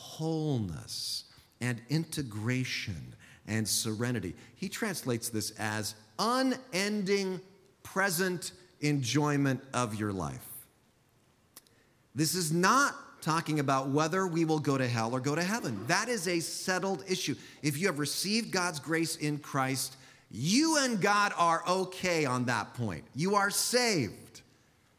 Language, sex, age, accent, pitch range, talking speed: English, male, 40-59, American, 120-185 Hz, 130 wpm